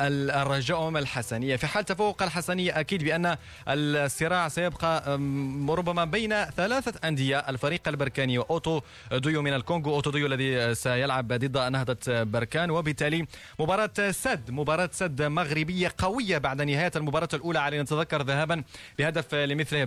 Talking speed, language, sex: 135 wpm, Arabic, male